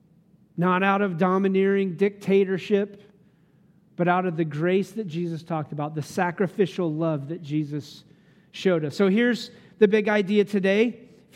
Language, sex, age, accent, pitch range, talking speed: English, male, 40-59, American, 175-220 Hz, 150 wpm